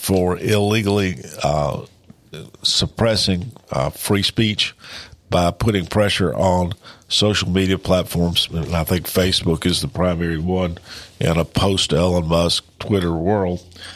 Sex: male